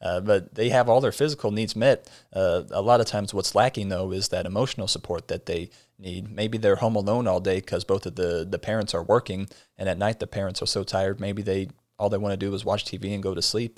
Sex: male